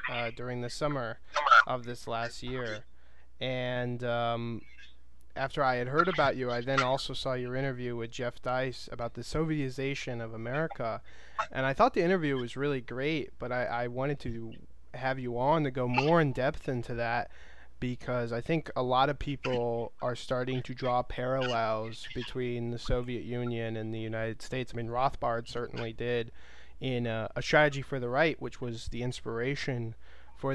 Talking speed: 175 wpm